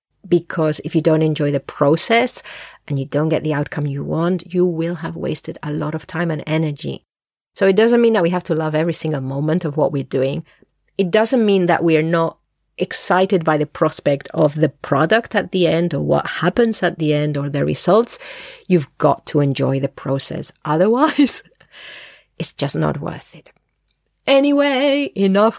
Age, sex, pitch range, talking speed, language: 40-59, female, 155-200 Hz, 190 wpm, English